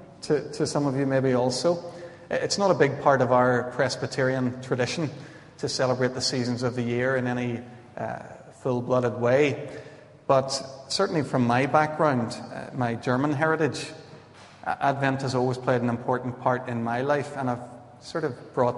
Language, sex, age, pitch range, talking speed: English, male, 30-49, 125-140 Hz, 165 wpm